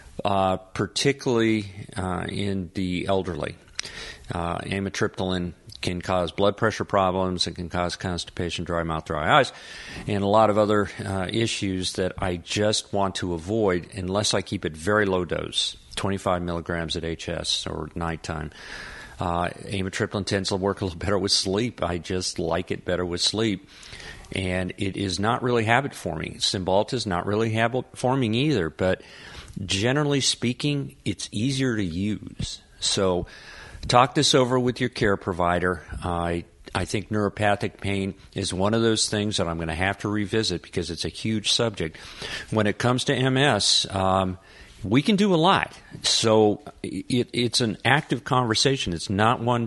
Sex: male